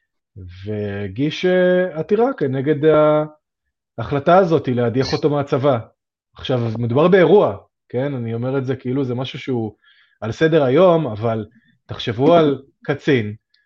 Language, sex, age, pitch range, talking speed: Hebrew, male, 30-49, 115-155 Hz, 125 wpm